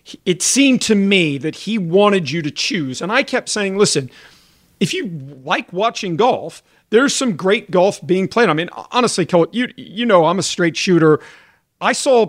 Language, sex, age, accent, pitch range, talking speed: English, male, 40-59, American, 155-205 Hz, 190 wpm